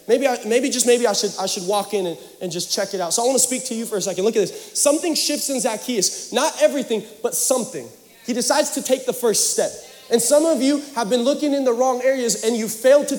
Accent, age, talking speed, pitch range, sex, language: American, 20-39, 275 wpm, 165-240 Hz, male, English